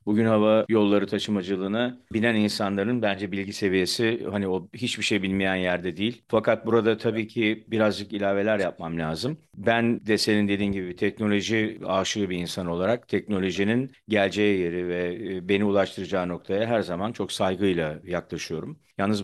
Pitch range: 95-120 Hz